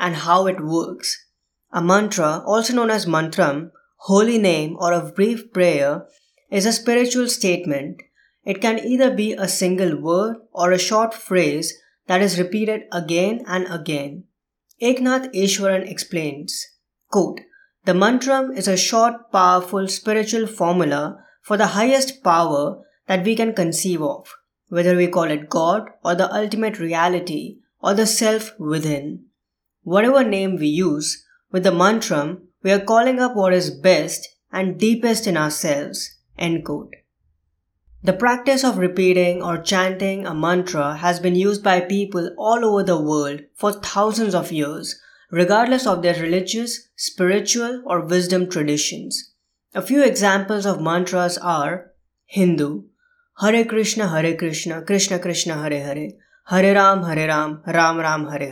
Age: 20-39